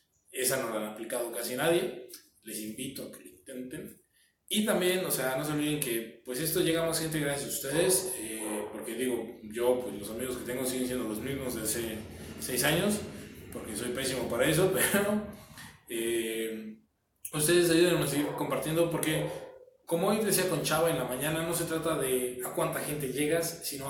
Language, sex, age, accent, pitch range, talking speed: Spanish, male, 20-39, Mexican, 120-165 Hz, 190 wpm